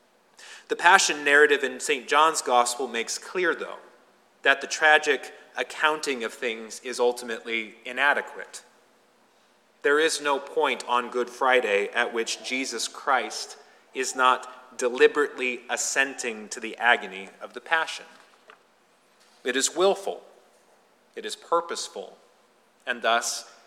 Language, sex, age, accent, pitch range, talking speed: English, male, 30-49, American, 125-160 Hz, 120 wpm